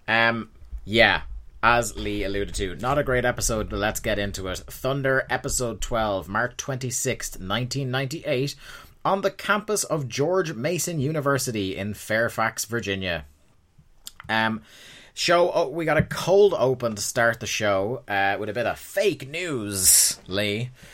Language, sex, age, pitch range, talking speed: English, male, 30-49, 100-130 Hz, 145 wpm